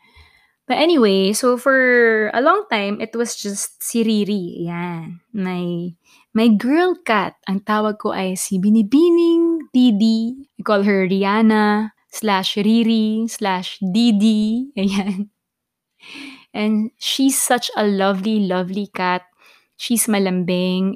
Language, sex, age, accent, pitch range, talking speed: Filipino, female, 20-39, native, 190-235 Hz, 120 wpm